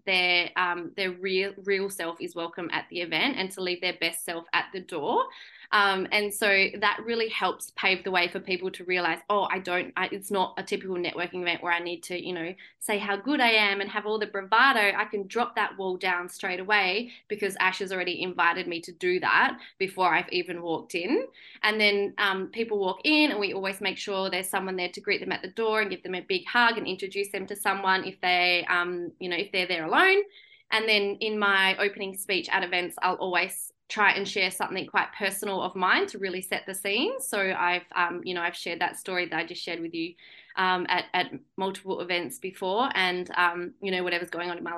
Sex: female